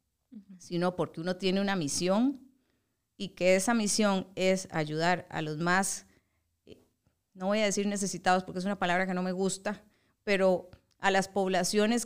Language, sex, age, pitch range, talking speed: Spanish, female, 30-49, 180-215 Hz, 160 wpm